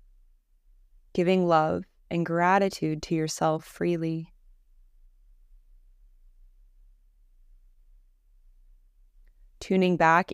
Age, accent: 20-39, American